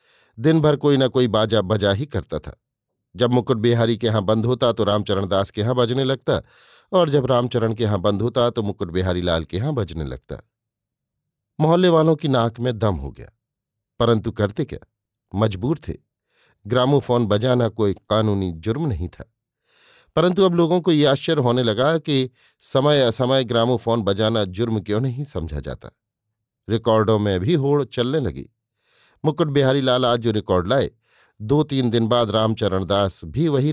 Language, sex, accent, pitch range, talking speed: Hindi, male, native, 105-130 Hz, 175 wpm